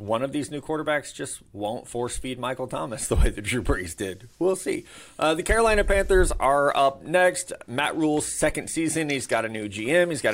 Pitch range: 125-145 Hz